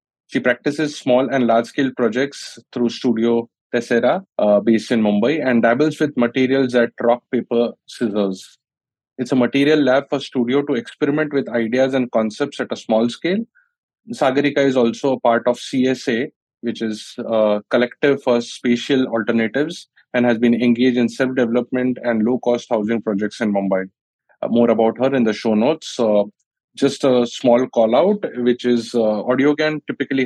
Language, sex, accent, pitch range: English, male, Indian, 110-135 Hz